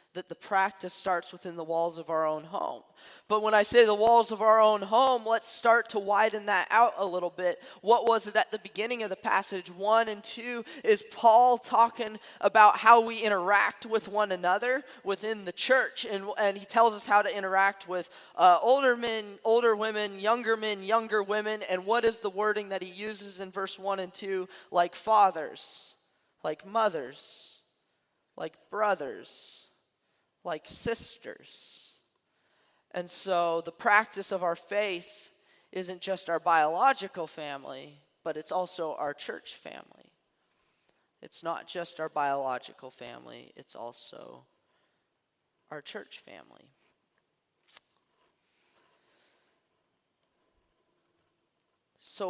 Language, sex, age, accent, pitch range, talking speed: English, male, 20-39, American, 180-225 Hz, 140 wpm